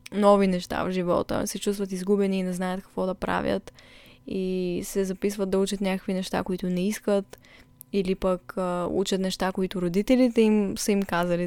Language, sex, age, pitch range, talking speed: Bulgarian, female, 10-29, 185-210 Hz, 180 wpm